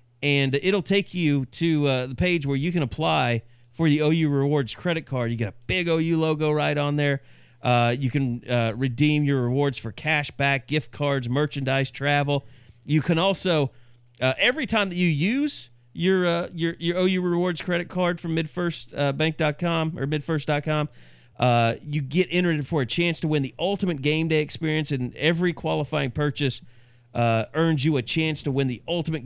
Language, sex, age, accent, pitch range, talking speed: English, male, 40-59, American, 120-160 Hz, 185 wpm